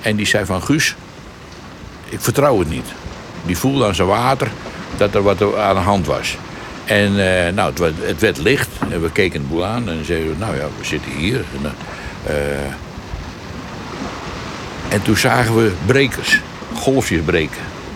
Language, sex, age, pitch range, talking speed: Dutch, male, 60-79, 85-115 Hz, 170 wpm